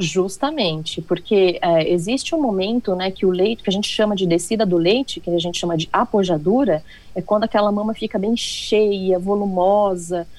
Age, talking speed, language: 30-49, 185 wpm, Portuguese